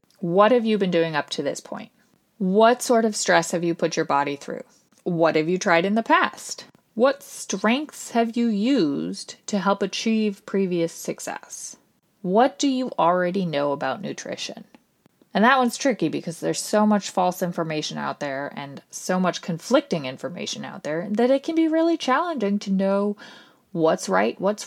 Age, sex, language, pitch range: 20-39, female, English, 165-225 Hz